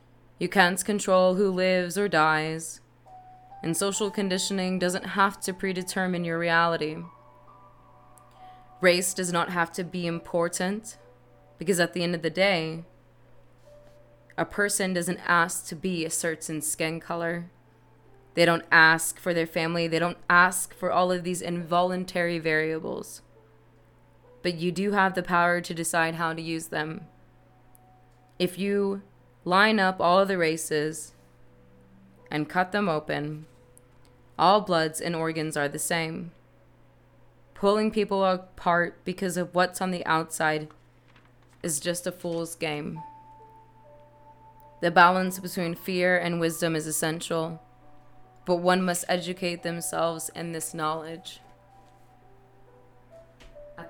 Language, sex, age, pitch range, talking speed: English, female, 20-39, 130-180 Hz, 130 wpm